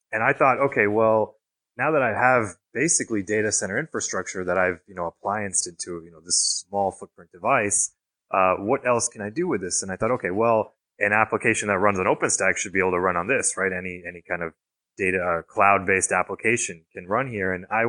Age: 20-39